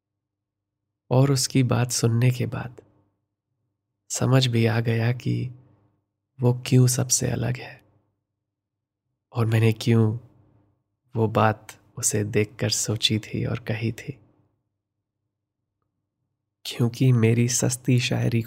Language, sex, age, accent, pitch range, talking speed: Hindi, male, 20-39, native, 105-125 Hz, 105 wpm